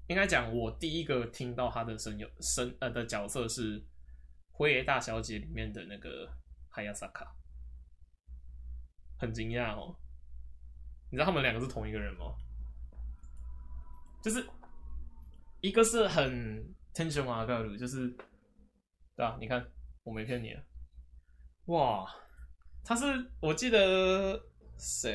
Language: Chinese